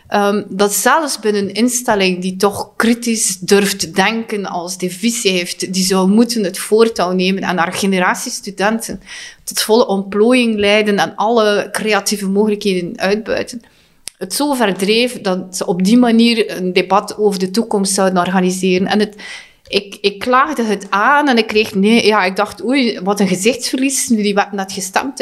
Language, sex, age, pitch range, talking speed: Dutch, female, 30-49, 190-225 Hz, 170 wpm